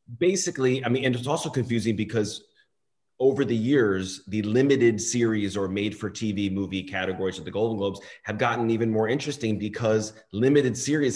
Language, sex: English, male